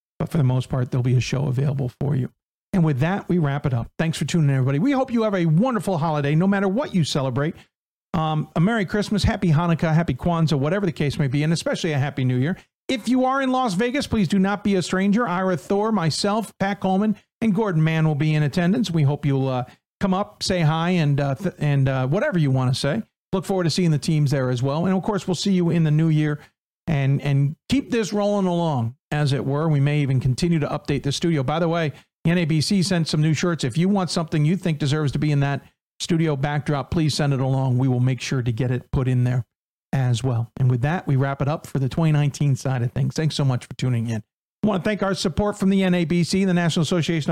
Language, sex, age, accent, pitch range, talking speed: English, male, 50-69, American, 140-185 Hz, 255 wpm